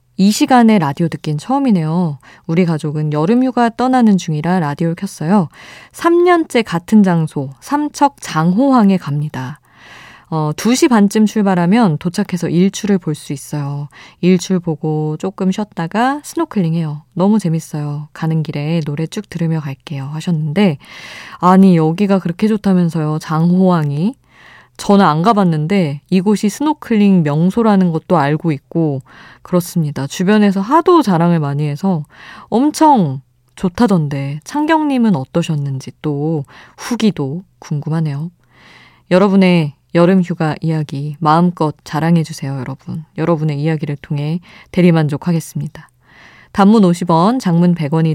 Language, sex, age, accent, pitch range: Korean, female, 20-39, native, 150-205 Hz